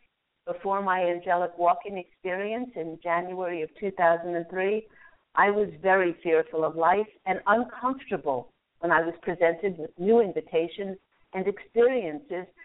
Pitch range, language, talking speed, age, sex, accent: 175-230 Hz, English, 125 wpm, 50-69, female, American